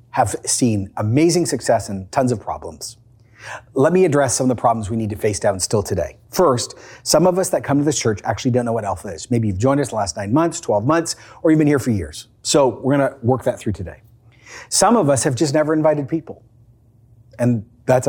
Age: 40-59